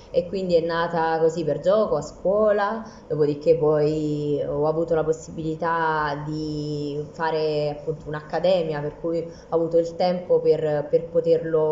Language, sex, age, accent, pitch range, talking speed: Italian, female, 20-39, native, 160-195 Hz, 145 wpm